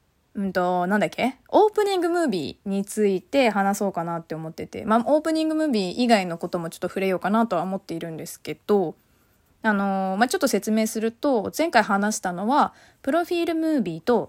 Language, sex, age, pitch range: Japanese, female, 20-39, 190-290 Hz